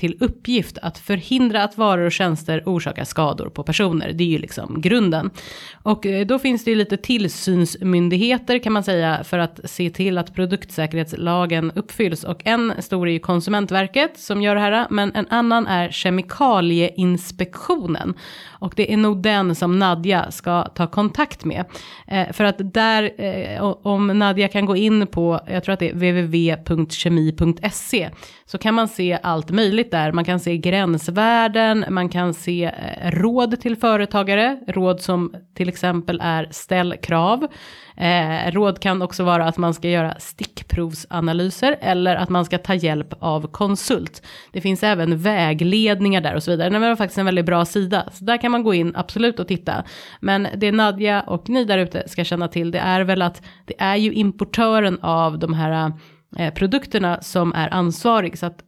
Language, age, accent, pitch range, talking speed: Swedish, 30-49, native, 170-205 Hz, 170 wpm